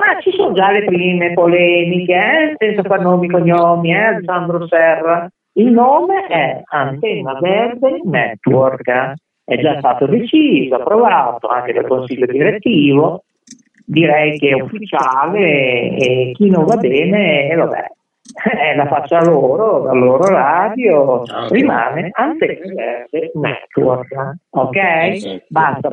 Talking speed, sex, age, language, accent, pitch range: 130 wpm, male, 50-69, Italian, native, 145-235 Hz